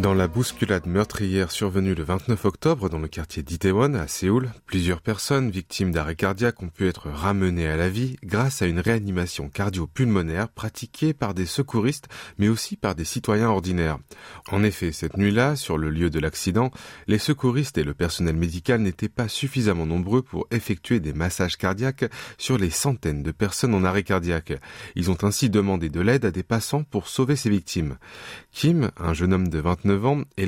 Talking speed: 185 wpm